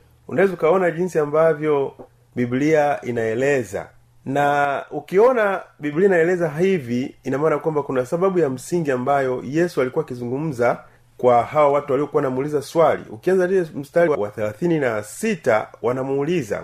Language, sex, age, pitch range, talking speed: Swahili, male, 30-49, 125-185 Hz, 120 wpm